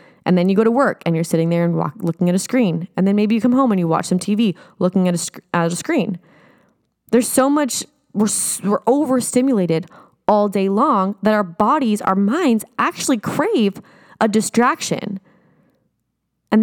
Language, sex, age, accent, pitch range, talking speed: English, female, 20-39, American, 185-235 Hz, 190 wpm